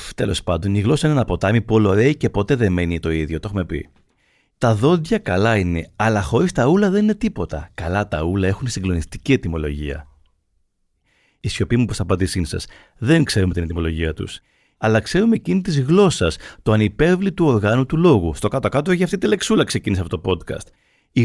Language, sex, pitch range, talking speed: Greek, male, 95-145 Hz, 200 wpm